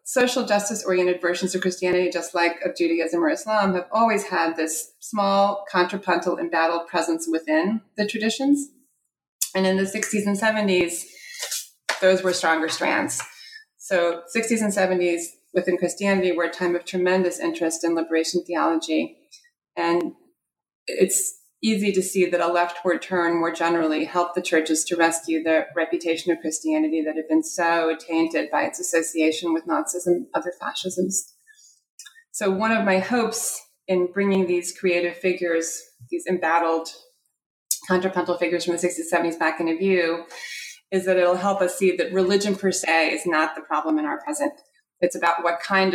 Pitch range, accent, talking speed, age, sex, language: 170-205 Hz, American, 160 wpm, 30-49, female, English